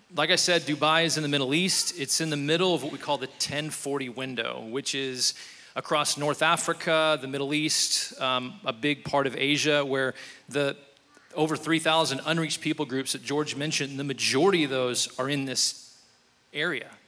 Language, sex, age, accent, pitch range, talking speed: English, male, 30-49, American, 135-155 Hz, 185 wpm